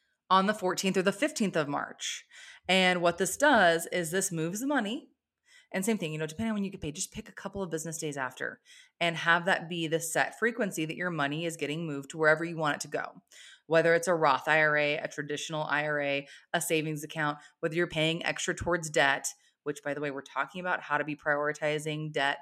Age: 20-39